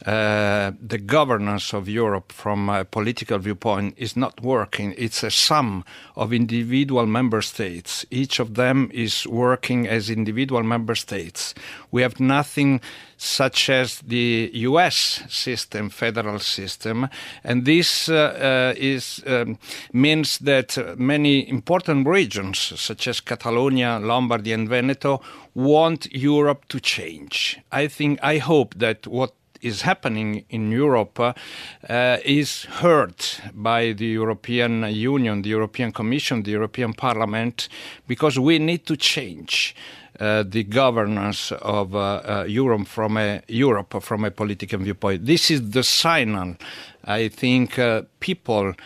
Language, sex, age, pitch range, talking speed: English, male, 50-69, 105-130 Hz, 135 wpm